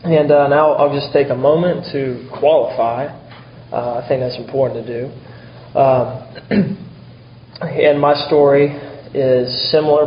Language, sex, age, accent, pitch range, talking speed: English, male, 20-39, American, 120-140 Hz, 135 wpm